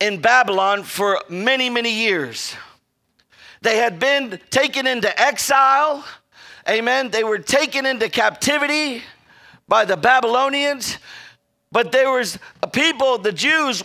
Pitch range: 220-275 Hz